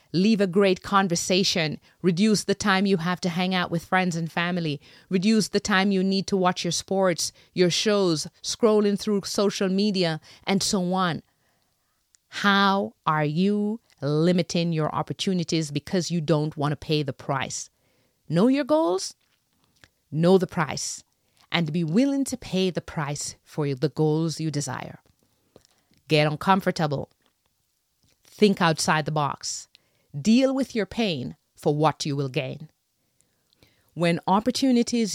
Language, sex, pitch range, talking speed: English, female, 155-200 Hz, 140 wpm